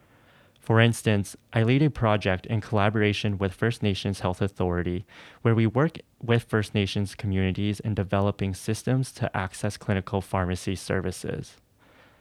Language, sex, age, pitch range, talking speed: English, male, 20-39, 95-115 Hz, 140 wpm